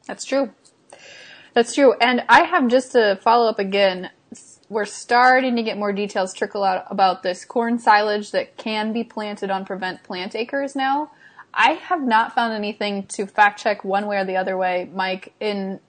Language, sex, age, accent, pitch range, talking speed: English, female, 20-39, American, 190-235 Hz, 185 wpm